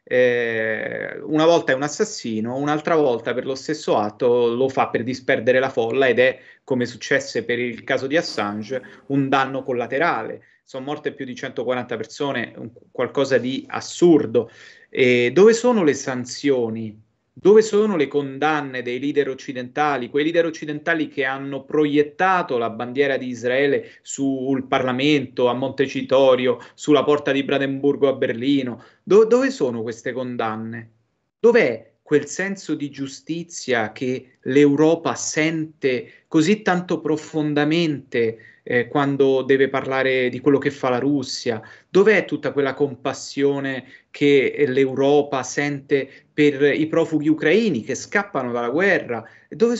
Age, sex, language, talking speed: 30-49, male, Italian, 135 wpm